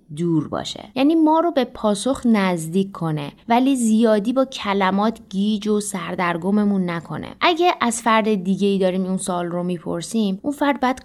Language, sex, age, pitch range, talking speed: Persian, female, 20-39, 170-225 Hz, 165 wpm